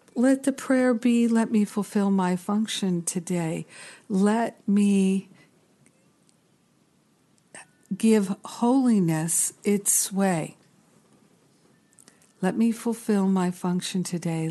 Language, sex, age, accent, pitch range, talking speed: English, female, 60-79, American, 175-210 Hz, 90 wpm